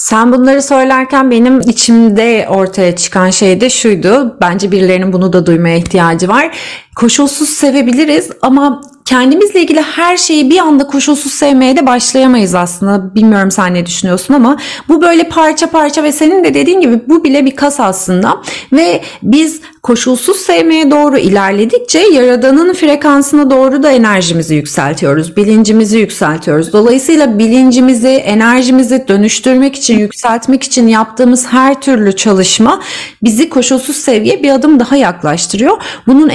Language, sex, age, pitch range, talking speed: Turkish, female, 30-49, 205-280 Hz, 135 wpm